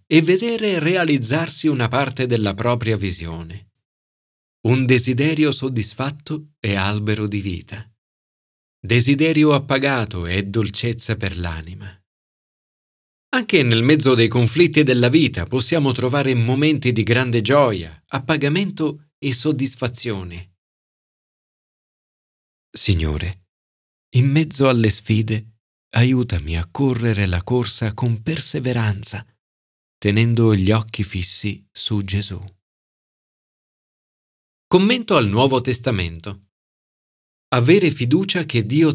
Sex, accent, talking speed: male, native, 95 wpm